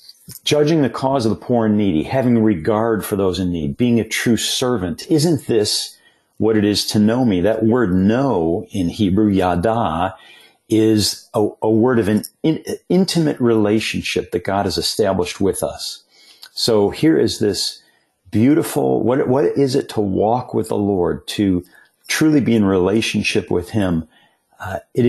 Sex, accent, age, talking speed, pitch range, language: male, American, 50-69, 165 wpm, 95-120 Hz, English